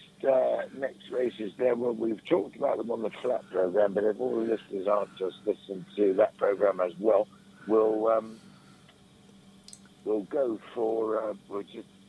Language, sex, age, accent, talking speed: English, male, 60-79, British, 170 wpm